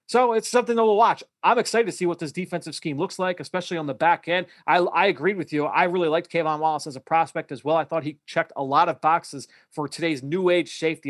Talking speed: 265 wpm